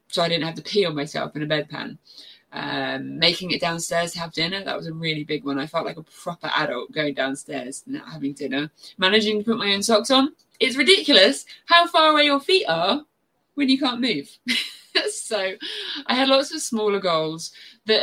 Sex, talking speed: female, 210 wpm